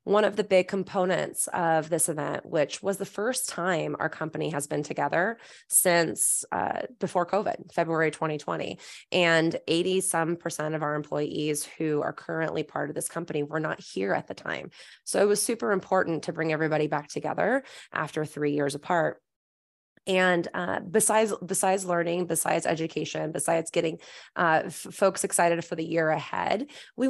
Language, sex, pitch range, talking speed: English, female, 160-200 Hz, 170 wpm